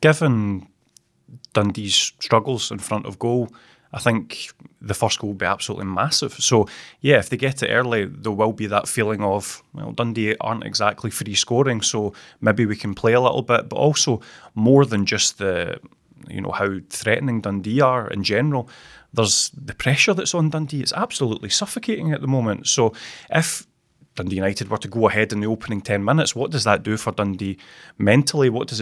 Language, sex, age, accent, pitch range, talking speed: English, male, 20-39, British, 105-130 Hz, 190 wpm